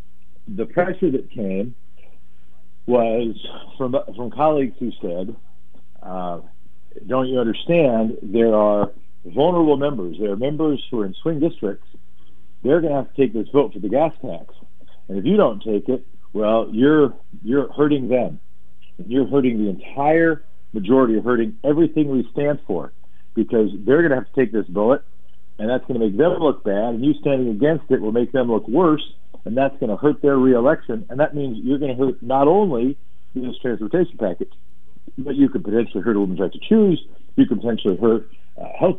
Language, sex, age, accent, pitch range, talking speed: English, male, 50-69, American, 95-145 Hz, 185 wpm